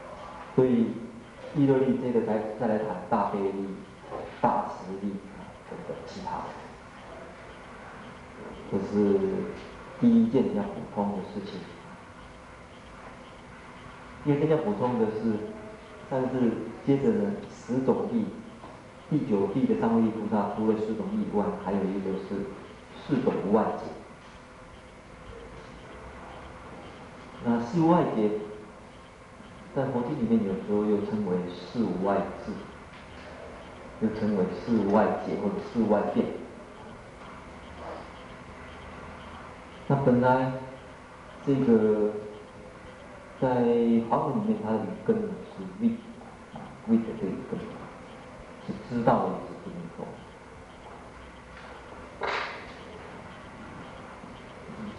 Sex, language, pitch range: male, Chinese, 105-170 Hz